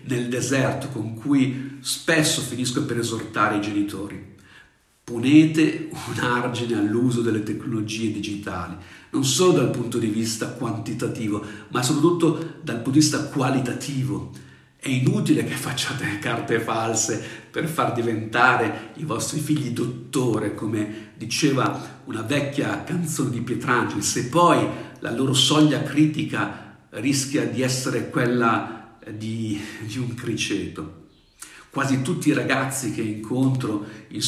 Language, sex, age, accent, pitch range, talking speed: Italian, male, 50-69, native, 110-140 Hz, 125 wpm